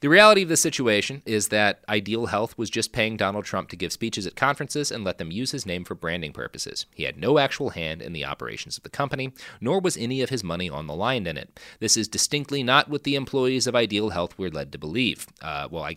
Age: 30-49